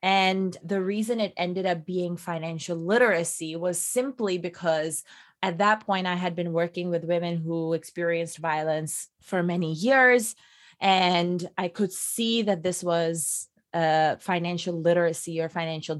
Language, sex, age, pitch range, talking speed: English, female, 20-39, 160-180 Hz, 145 wpm